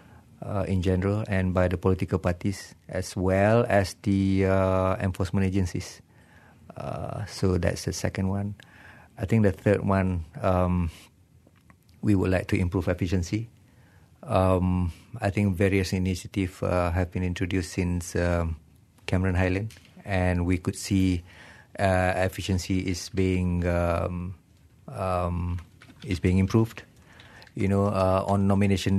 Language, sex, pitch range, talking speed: English, male, 90-100 Hz, 135 wpm